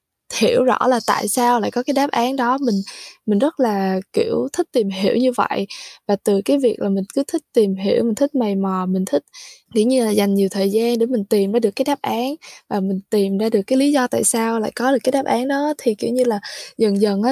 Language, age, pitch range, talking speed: Vietnamese, 10-29, 200-260 Hz, 260 wpm